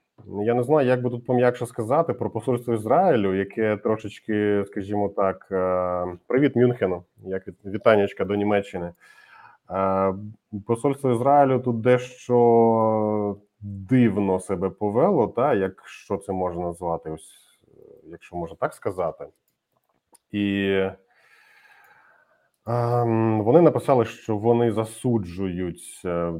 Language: Ukrainian